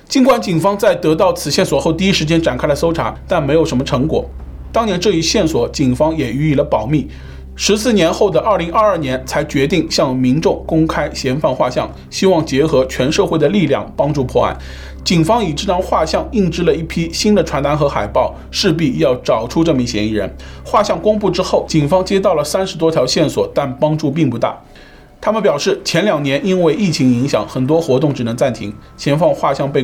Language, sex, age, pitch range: Chinese, male, 20-39, 130-185 Hz